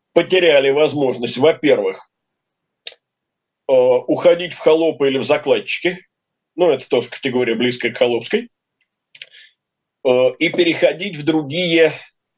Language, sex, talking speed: Russian, male, 95 wpm